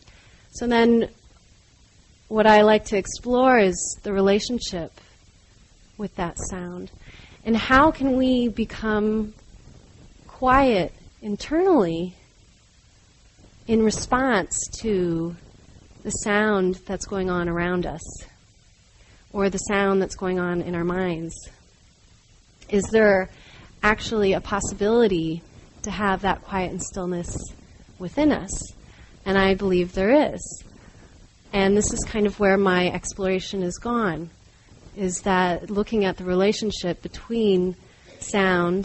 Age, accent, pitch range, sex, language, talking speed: 30-49, American, 175-215 Hz, female, English, 115 wpm